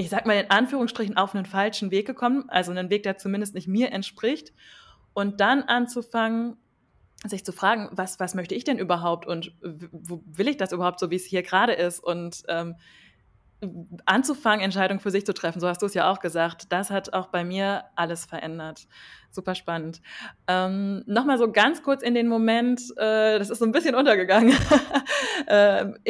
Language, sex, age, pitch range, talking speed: German, female, 20-39, 185-225 Hz, 190 wpm